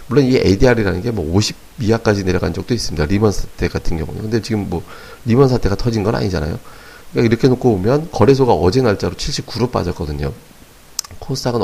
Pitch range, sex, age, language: 95-130 Hz, male, 40-59, Korean